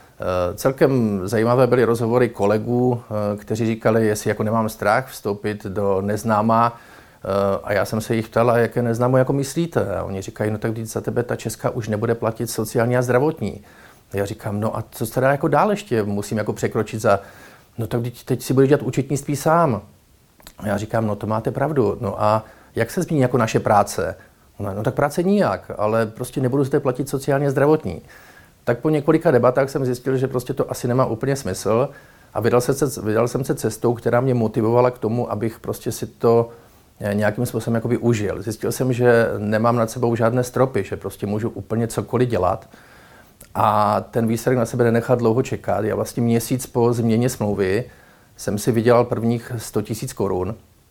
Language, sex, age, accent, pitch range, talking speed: Czech, male, 40-59, native, 105-125 Hz, 185 wpm